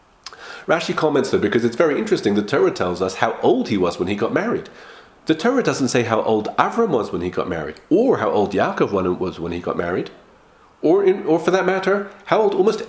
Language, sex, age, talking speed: English, male, 40-59, 230 wpm